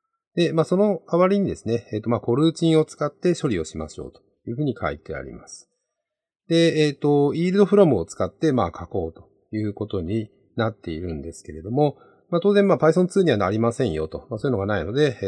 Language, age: Japanese, 40-59